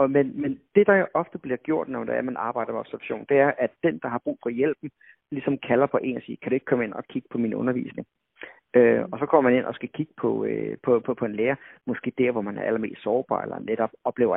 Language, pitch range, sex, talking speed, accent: Danish, 125-155 Hz, male, 265 wpm, native